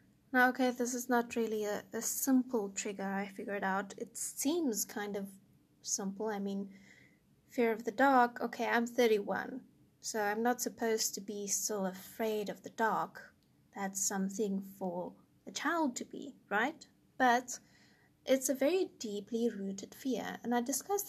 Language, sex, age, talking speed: English, female, 20-39, 160 wpm